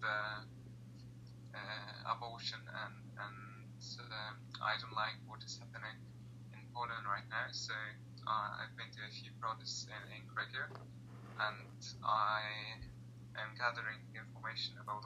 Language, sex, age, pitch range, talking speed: English, male, 20-39, 110-120 Hz, 130 wpm